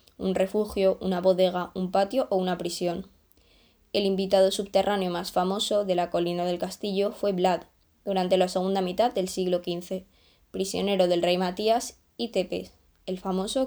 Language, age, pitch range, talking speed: Czech, 10-29, 175-200 Hz, 160 wpm